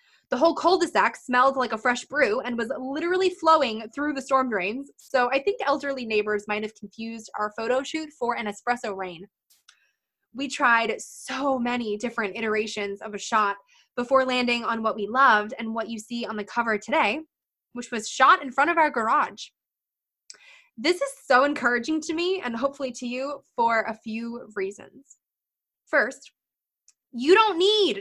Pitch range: 225-280 Hz